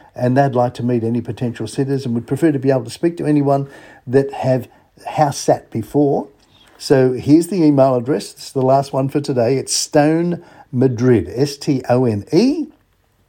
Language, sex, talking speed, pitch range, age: English, male, 170 wpm, 125-165 Hz, 50-69